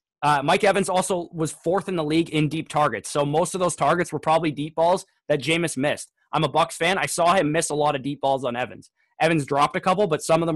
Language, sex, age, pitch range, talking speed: English, male, 20-39, 145-170 Hz, 265 wpm